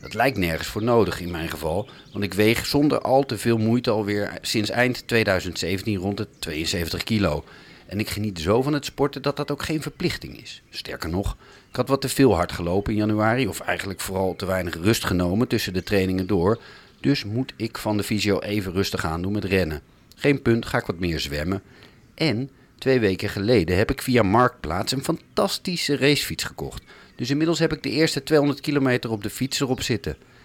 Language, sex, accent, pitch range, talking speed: Dutch, male, Dutch, 95-130 Hz, 200 wpm